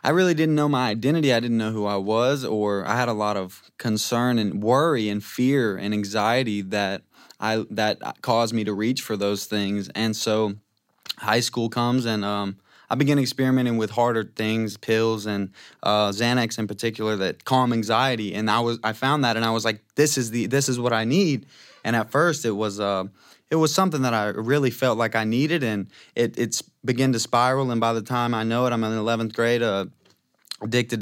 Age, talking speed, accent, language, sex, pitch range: 20-39, 215 wpm, American, English, male, 110-125 Hz